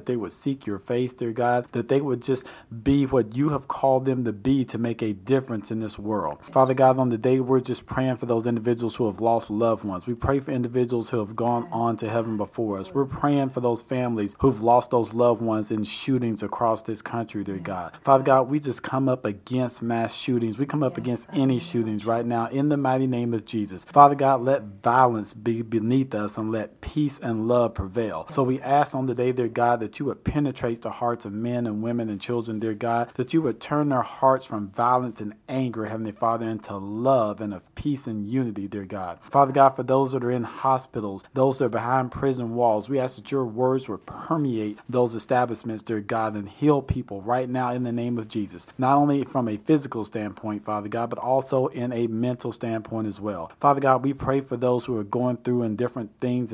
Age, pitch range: 40-59, 110-130 Hz